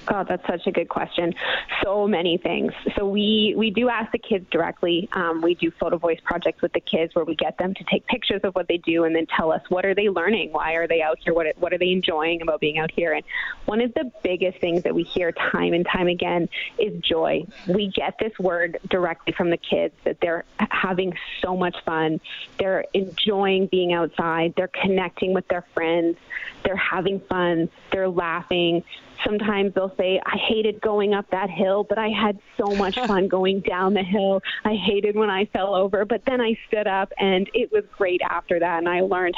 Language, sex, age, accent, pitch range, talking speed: English, female, 20-39, American, 175-210 Hz, 215 wpm